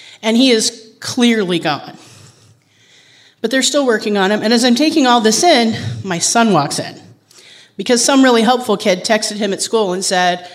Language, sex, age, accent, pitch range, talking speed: English, female, 30-49, American, 185-235 Hz, 190 wpm